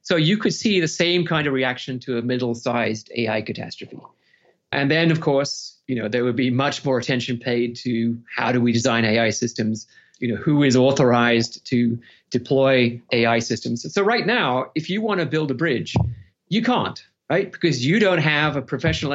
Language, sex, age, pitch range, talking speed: English, male, 30-49, 120-155 Hz, 195 wpm